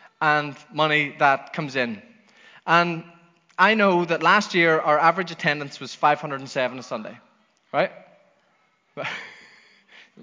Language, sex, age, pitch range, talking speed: English, male, 20-39, 140-200 Hz, 115 wpm